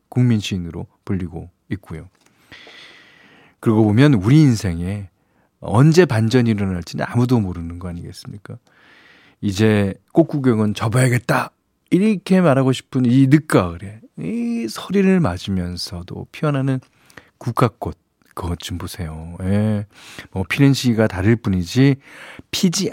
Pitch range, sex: 95-135 Hz, male